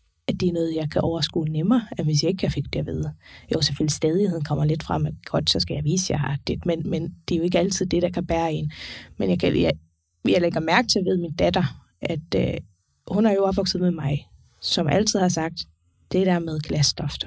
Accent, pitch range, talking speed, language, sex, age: native, 160-205 Hz, 250 wpm, Danish, female, 20-39